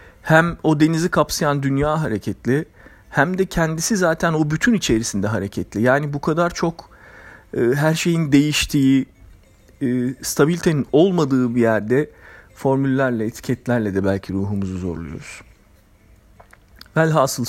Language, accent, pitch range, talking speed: Turkish, native, 100-140 Hz, 115 wpm